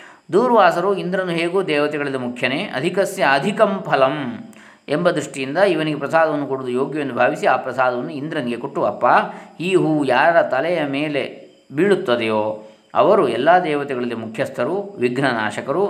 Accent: native